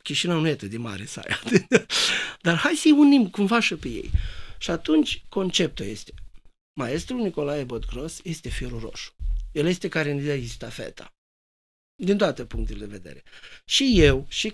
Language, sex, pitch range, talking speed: Romanian, male, 135-210 Hz, 165 wpm